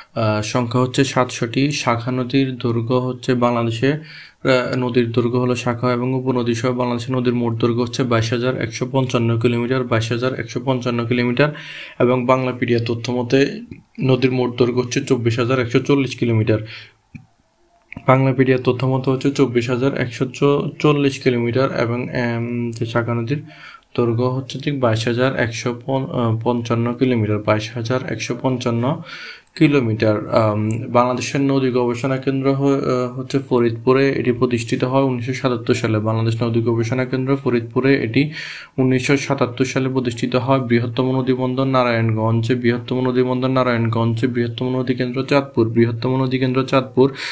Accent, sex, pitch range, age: native, male, 120-130 Hz, 20-39